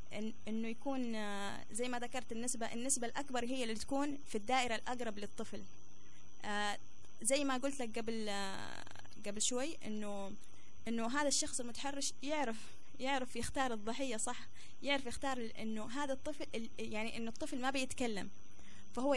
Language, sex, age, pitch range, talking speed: Arabic, female, 20-39, 215-270 Hz, 145 wpm